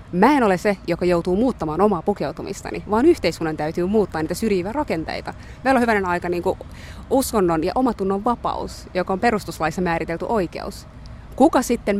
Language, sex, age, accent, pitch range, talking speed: Finnish, female, 20-39, native, 160-215 Hz, 155 wpm